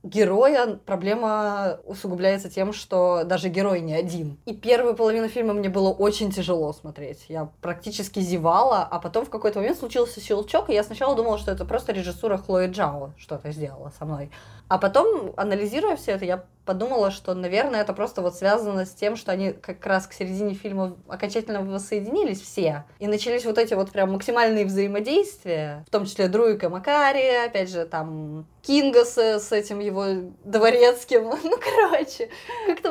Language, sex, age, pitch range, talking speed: Russian, female, 20-39, 185-235 Hz, 165 wpm